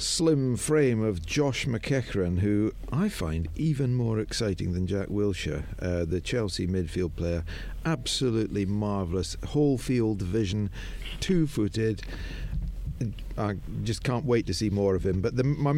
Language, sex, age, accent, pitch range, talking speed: English, male, 50-69, British, 90-120 Hz, 135 wpm